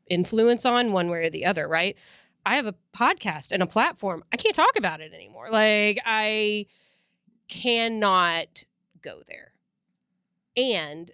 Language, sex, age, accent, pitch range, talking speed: English, female, 30-49, American, 170-205 Hz, 145 wpm